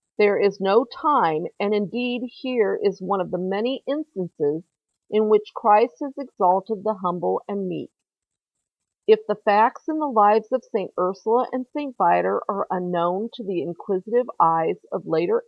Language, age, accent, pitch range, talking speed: English, 50-69, American, 180-245 Hz, 165 wpm